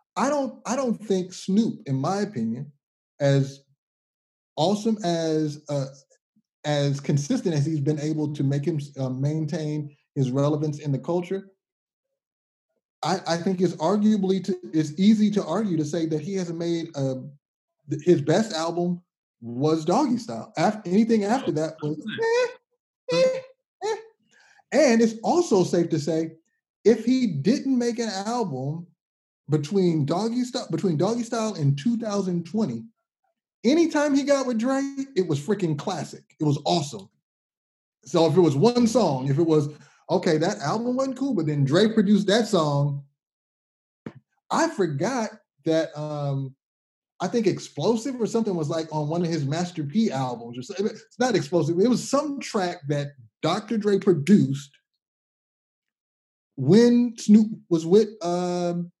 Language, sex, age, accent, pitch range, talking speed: English, male, 30-49, American, 150-225 Hz, 150 wpm